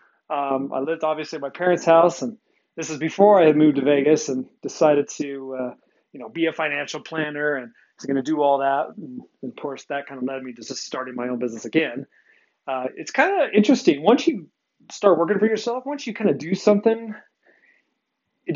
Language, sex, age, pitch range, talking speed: English, male, 30-49, 150-210 Hz, 215 wpm